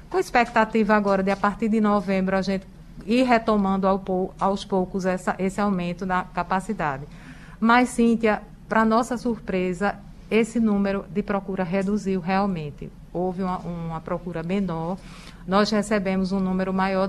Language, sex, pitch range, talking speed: Portuguese, female, 180-210 Hz, 135 wpm